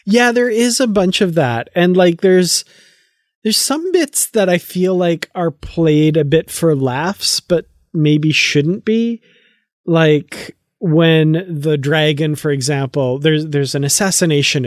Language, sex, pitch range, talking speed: English, male, 140-170 Hz, 150 wpm